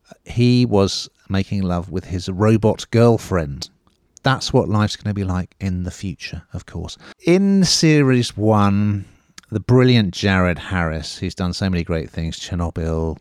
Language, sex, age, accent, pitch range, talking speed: English, male, 30-49, British, 90-110 Hz, 155 wpm